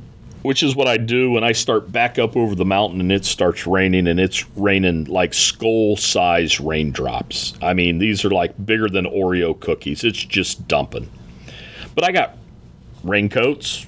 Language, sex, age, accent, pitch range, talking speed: English, male, 40-59, American, 90-115 Hz, 170 wpm